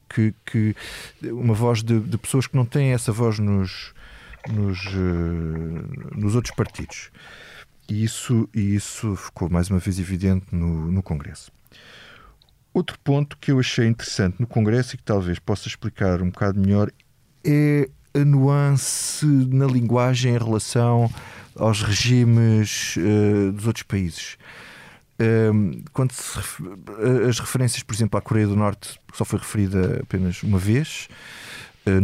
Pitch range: 95-125 Hz